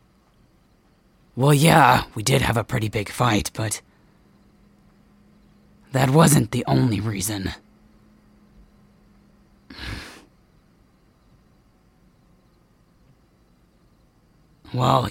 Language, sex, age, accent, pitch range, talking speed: English, male, 30-49, American, 115-150 Hz, 65 wpm